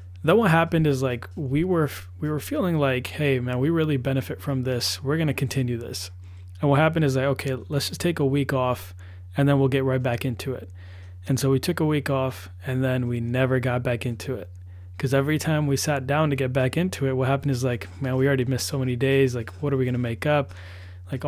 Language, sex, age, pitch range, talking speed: English, male, 20-39, 125-145 Hz, 250 wpm